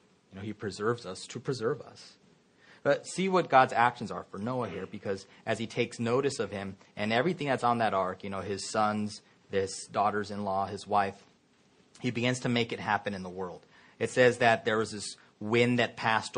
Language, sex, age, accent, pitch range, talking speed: English, male, 30-49, American, 100-120 Hz, 205 wpm